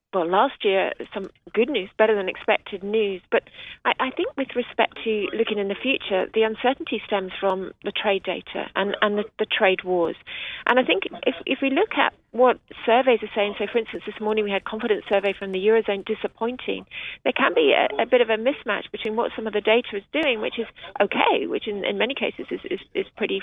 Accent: British